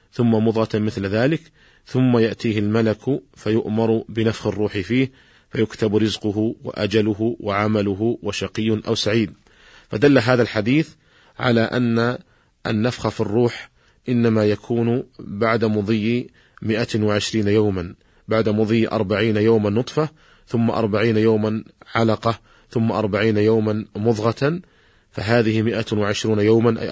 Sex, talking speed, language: male, 110 wpm, Arabic